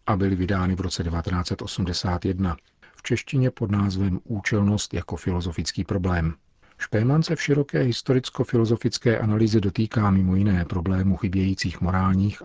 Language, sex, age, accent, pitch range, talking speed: Czech, male, 40-59, native, 90-105 Hz, 125 wpm